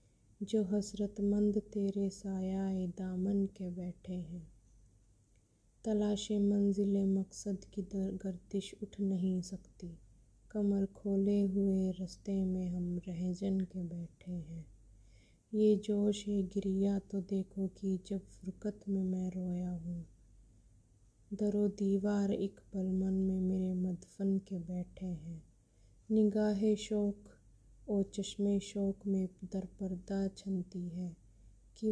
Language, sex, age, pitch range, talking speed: Hindi, female, 20-39, 175-200 Hz, 115 wpm